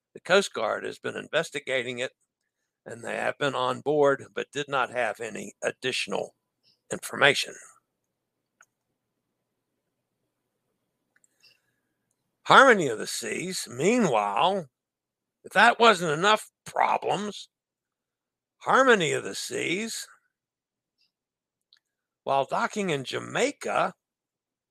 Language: English